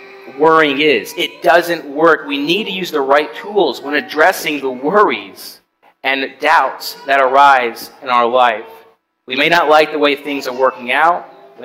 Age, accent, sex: 30-49, American, male